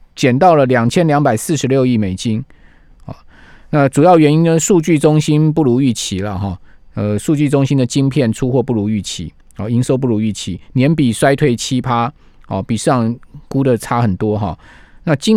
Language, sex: Chinese, male